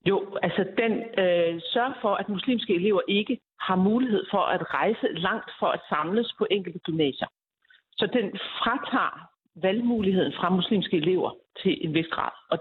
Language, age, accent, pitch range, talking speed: Danish, 60-79, native, 190-245 Hz, 160 wpm